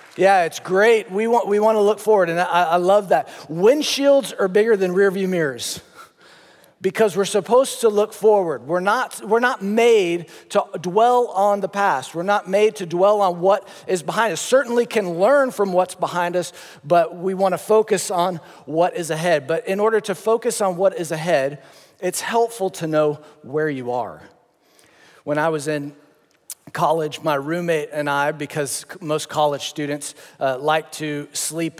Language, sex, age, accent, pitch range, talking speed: English, male, 40-59, American, 150-195 Hz, 180 wpm